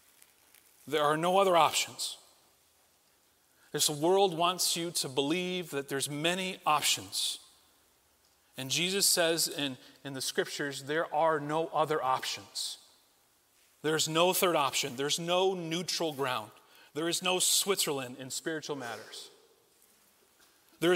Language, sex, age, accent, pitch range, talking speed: English, male, 40-59, American, 145-185 Hz, 125 wpm